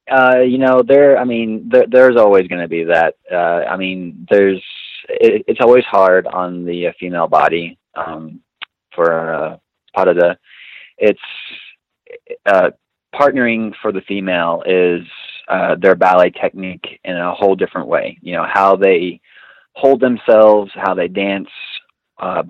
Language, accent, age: English, American, 20-39